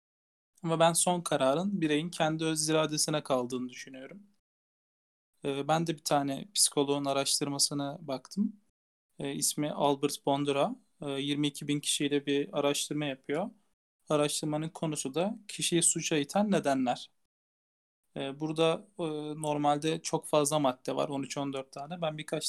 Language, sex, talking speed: Turkish, male, 110 wpm